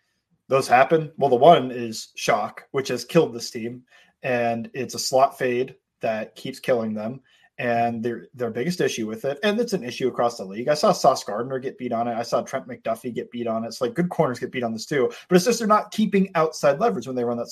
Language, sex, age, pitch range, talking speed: English, male, 30-49, 120-150 Hz, 245 wpm